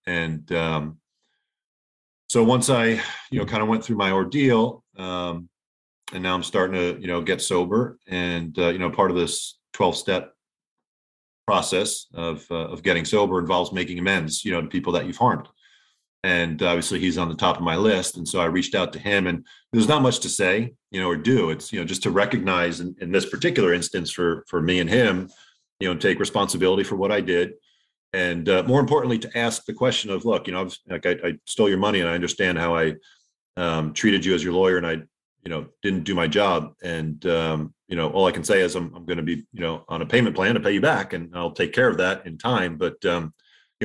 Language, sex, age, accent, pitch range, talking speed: English, male, 30-49, American, 85-110 Hz, 230 wpm